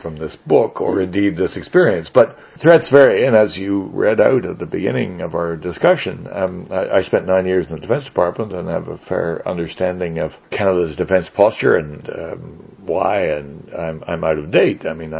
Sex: male